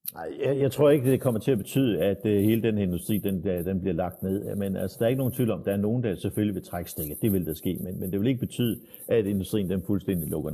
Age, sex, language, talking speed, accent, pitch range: 60-79, male, Danish, 285 wpm, native, 95-115 Hz